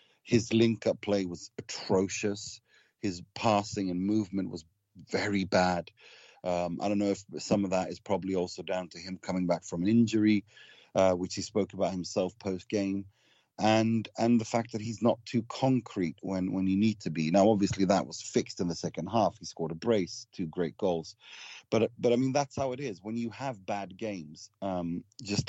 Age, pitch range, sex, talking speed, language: 30-49, 90-110 Hz, male, 200 wpm, English